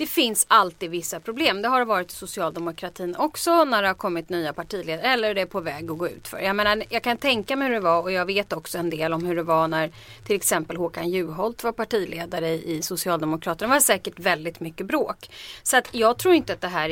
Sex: female